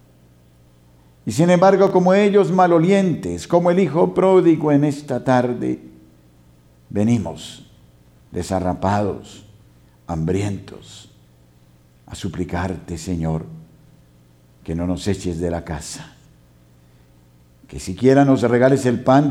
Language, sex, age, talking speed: Spanish, male, 60-79, 100 wpm